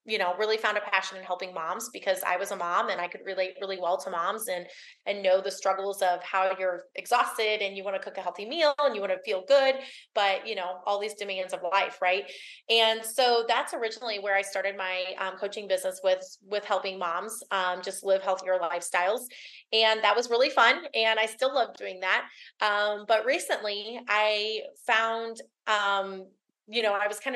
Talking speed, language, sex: 210 wpm, English, female